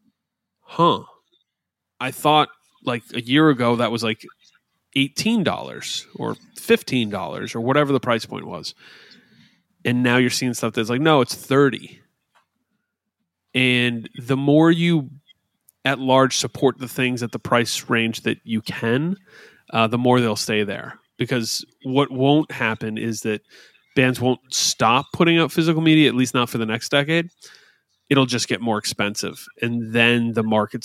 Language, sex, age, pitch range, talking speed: English, male, 30-49, 115-145 Hz, 155 wpm